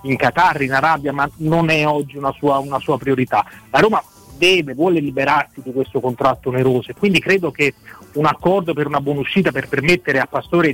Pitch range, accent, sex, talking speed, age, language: 140-170 Hz, native, male, 200 wpm, 30-49, Italian